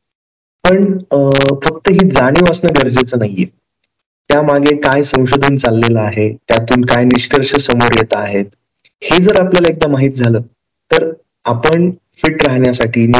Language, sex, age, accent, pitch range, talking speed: Marathi, male, 30-49, native, 120-145 Hz, 45 wpm